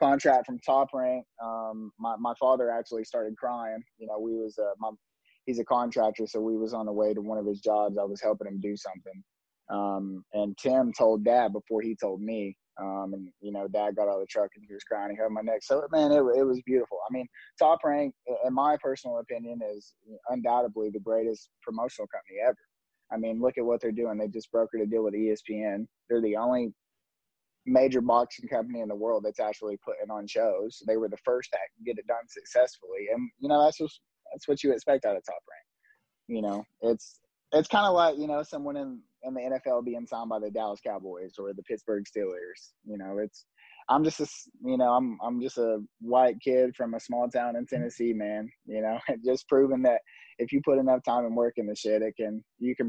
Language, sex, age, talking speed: English, male, 20-39, 225 wpm